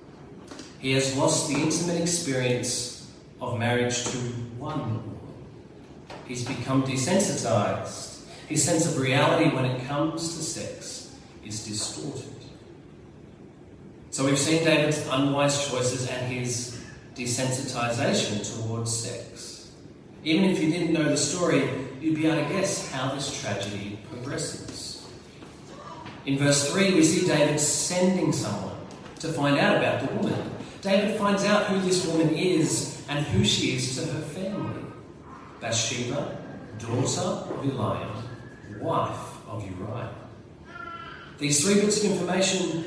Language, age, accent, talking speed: English, 30-49, Australian, 130 wpm